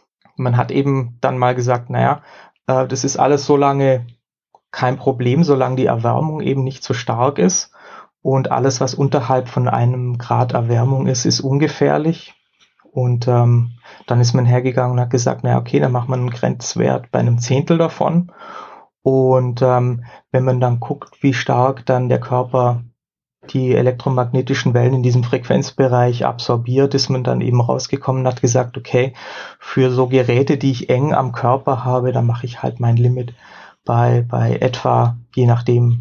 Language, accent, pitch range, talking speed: German, German, 120-135 Hz, 170 wpm